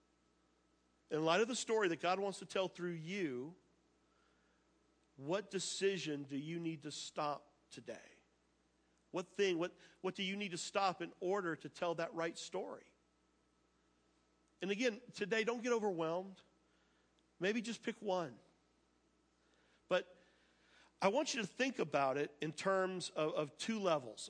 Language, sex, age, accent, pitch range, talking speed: English, male, 50-69, American, 155-200 Hz, 150 wpm